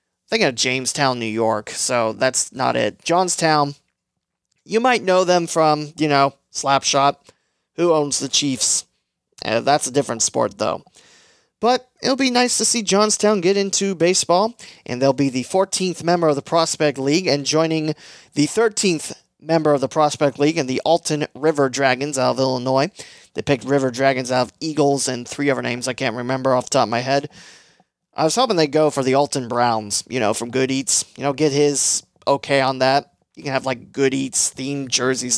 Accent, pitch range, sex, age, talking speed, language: American, 130-165 Hz, male, 30-49, 190 wpm, English